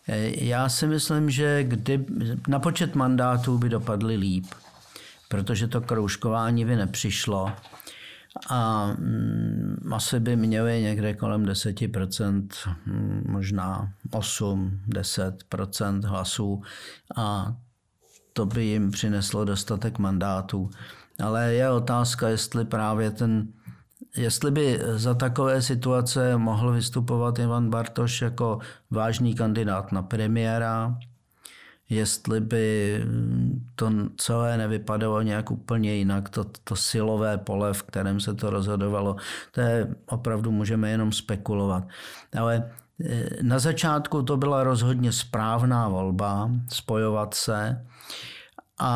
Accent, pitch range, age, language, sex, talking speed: native, 100-120 Hz, 50-69, Czech, male, 110 wpm